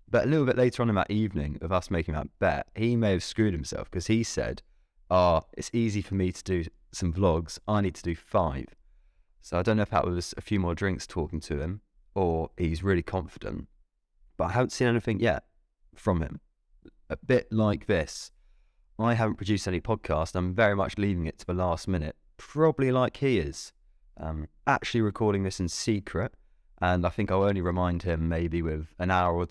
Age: 20-39